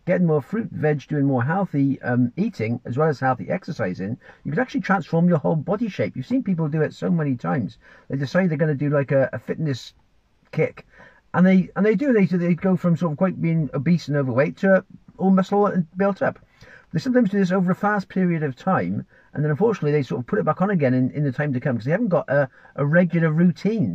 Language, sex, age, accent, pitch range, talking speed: English, male, 50-69, British, 135-185 Hz, 245 wpm